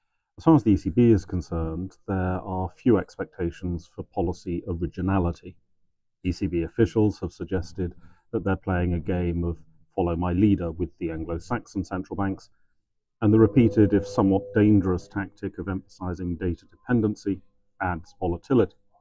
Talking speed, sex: 140 wpm, male